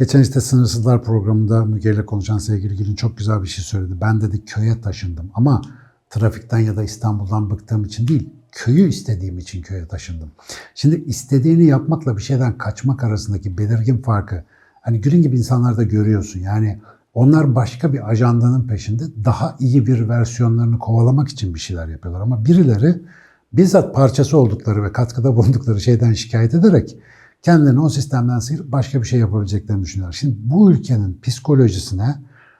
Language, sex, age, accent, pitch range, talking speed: Turkish, male, 60-79, native, 105-135 Hz, 155 wpm